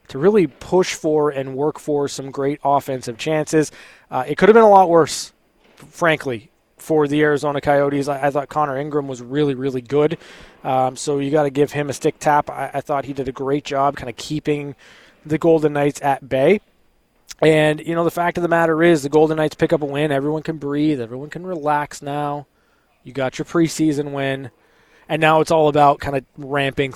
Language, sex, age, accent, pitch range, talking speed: English, male, 20-39, American, 135-160 Hz, 210 wpm